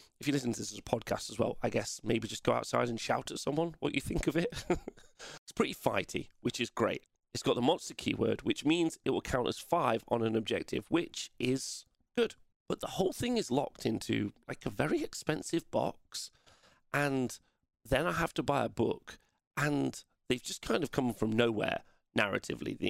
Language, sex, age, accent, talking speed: English, male, 40-59, British, 205 wpm